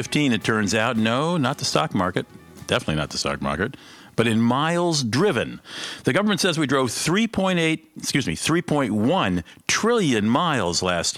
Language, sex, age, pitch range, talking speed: English, male, 50-69, 95-125 Hz, 155 wpm